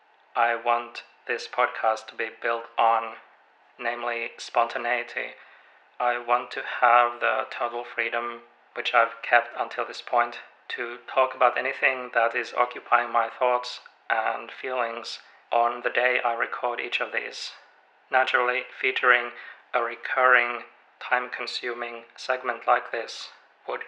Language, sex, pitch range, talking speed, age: English, male, 115-125 Hz, 130 wpm, 40-59